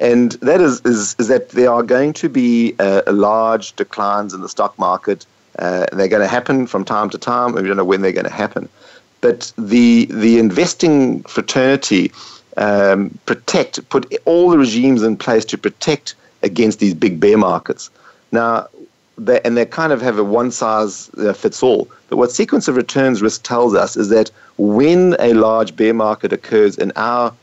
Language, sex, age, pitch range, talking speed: English, male, 50-69, 105-130 Hz, 180 wpm